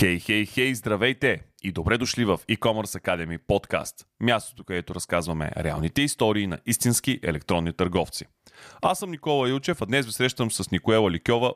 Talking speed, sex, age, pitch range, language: 160 wpm, male, 30-49, 95-130 Hz, Bulgarian